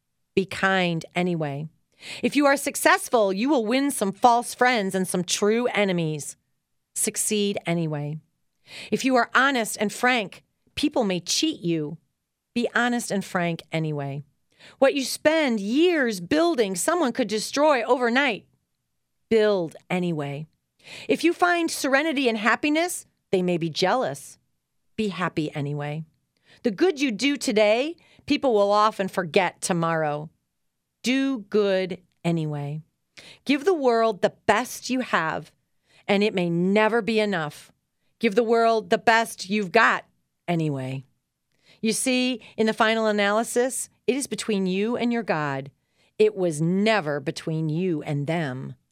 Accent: American